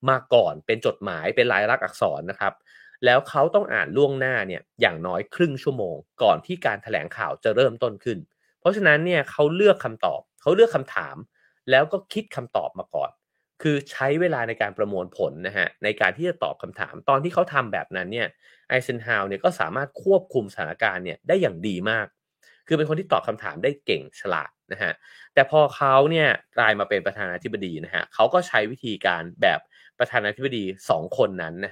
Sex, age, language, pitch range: male, 30-49, English, 115-180 Hz